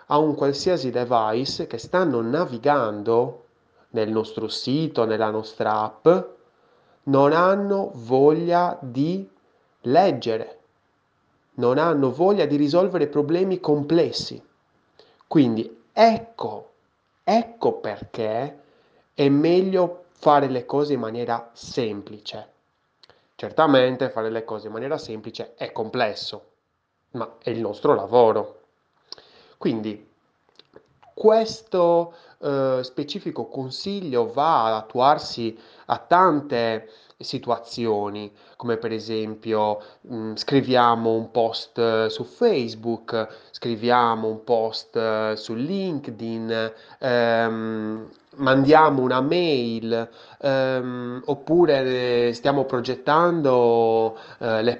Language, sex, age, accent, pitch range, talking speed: Italian, male, 30-49, native, 115-150 Hz, 90 wpm